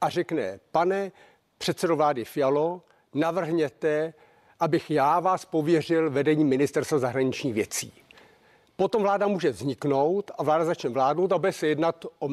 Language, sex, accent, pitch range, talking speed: Czech, male, native, 150-190 Hz, 135 wpm